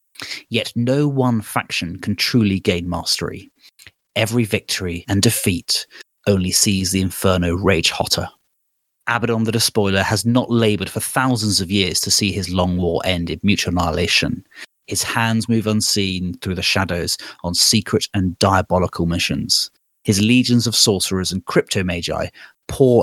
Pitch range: 95-115 Hz